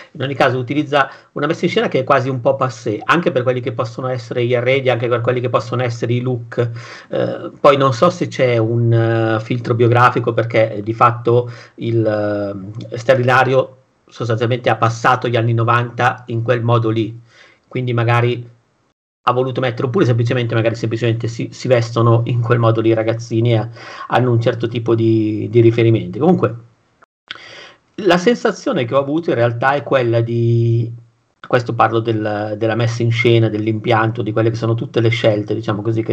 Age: 50-69